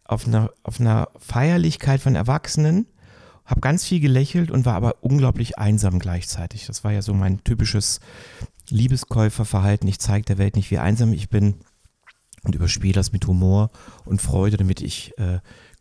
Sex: male